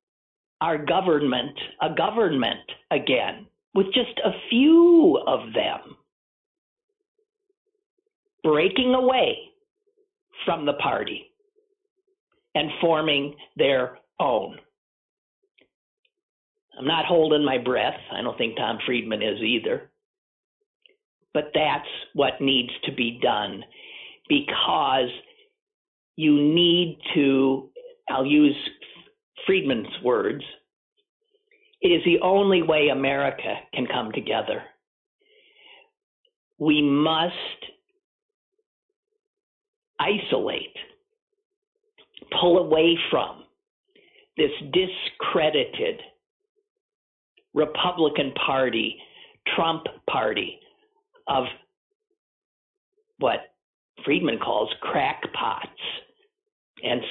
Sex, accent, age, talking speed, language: male, American, 50-69, 80 wpm, English